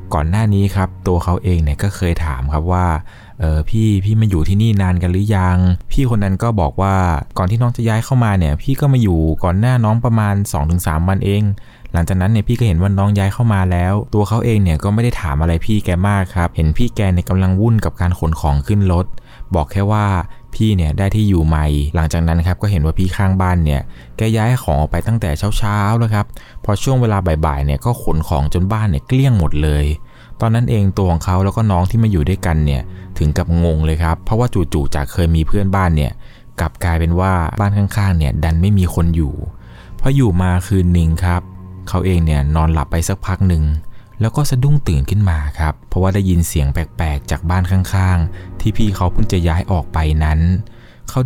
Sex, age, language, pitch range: male, 20-39, Thai, 80-105 Hz